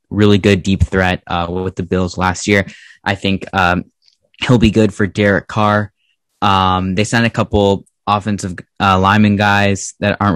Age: 10-29